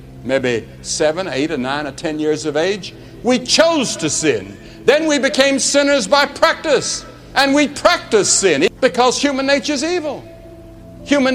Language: English